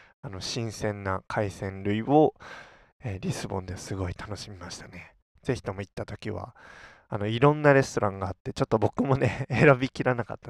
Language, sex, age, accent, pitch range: Japanese, male, 20-39, native, 100-130 Hz